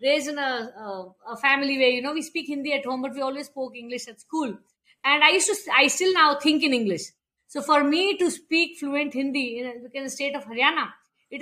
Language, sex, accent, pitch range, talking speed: English, female, Indian, 255-315 Hz, 230 wpm